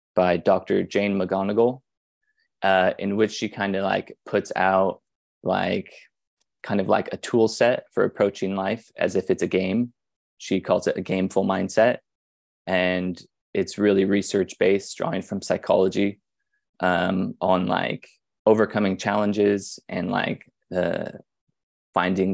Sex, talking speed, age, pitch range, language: male, 135 wpm, 20-39, 95-110 Hz, English